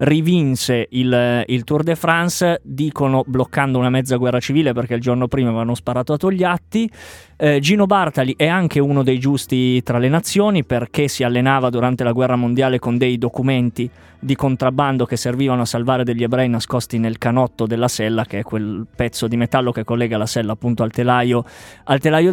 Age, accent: 20-39, native